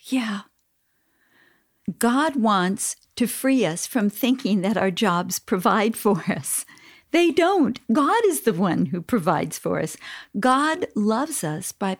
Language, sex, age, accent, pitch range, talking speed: English, female, 50-69, American, 175-245 Hz, 140 wpm